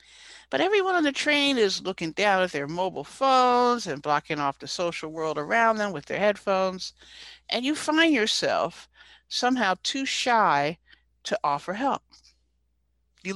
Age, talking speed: 60-79, 155 wpm